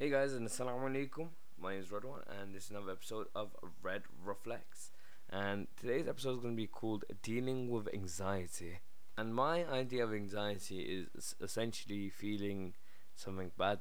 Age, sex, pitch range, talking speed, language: 20-39, male, 100-115 Hz, 160 wpm, English